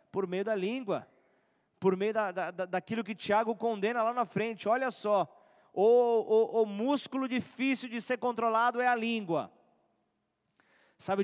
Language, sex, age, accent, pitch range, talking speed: Portuguese, male, 20-39, Brazilian, 160-225 Hz, 145 wpm